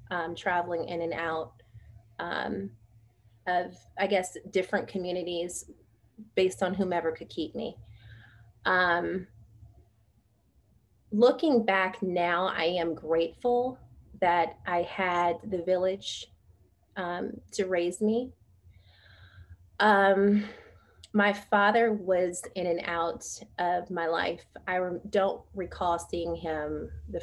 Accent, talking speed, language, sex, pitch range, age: American, 105 wpm, English, female, 155-190 Hz, 30-49